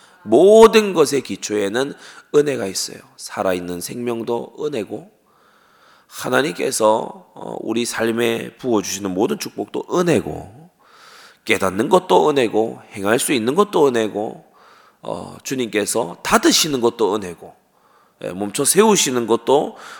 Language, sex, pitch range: Korean, male, 95-140 Hz